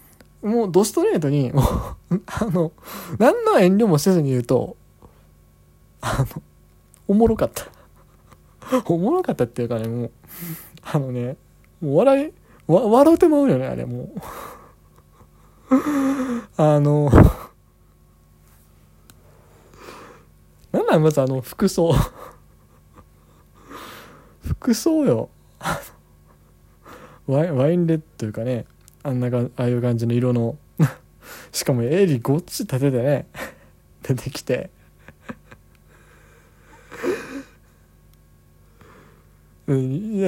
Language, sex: Japanese, male